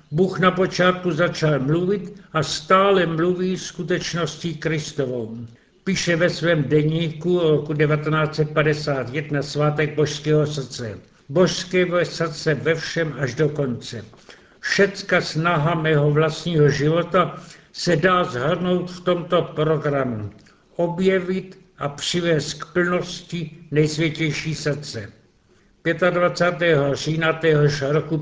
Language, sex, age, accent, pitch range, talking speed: Czech, male, 60-79, native, 145-175 Hz, 105 wpm